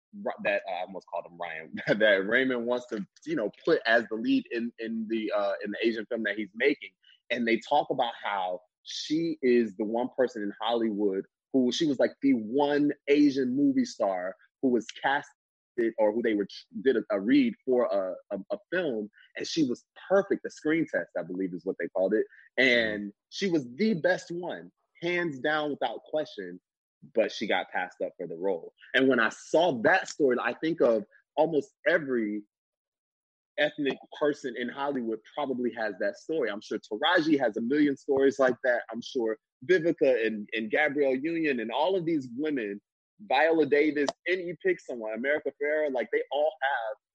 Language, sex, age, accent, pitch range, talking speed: English, male, 20-39, American, 120-180 Hz, 190 wpm